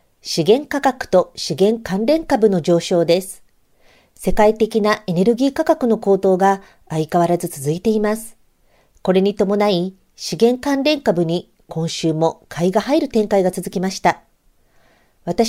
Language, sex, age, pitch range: Japanese, female, 50-69, 180-225 Hz